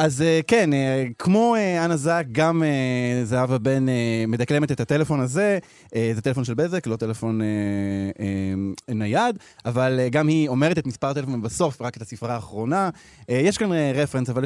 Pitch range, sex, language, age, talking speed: 125-175 Hz, male, Hebrew, 20-39, 145 wpm